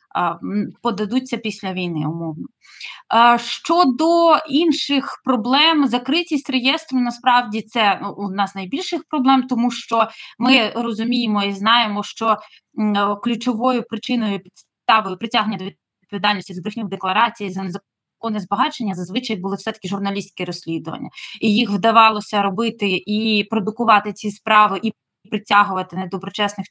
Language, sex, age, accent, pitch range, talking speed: Ukrainian, female, 20-39, native, 195-240 Hz, 115 wpm